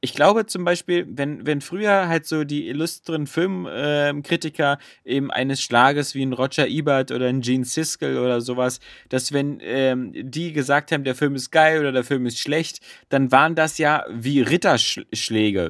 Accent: German